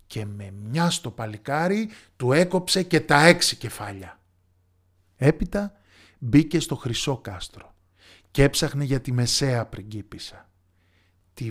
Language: Greek